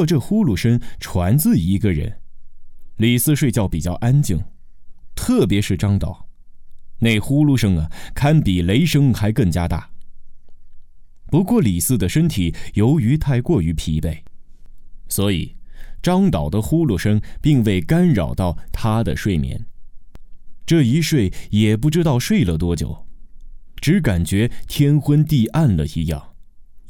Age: 20-39